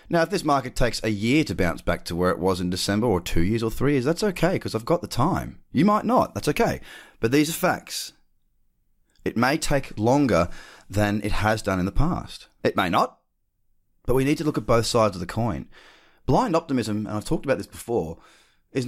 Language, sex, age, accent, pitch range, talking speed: English, male, 30-49, Australian, 100-150 Hz, 230 wpm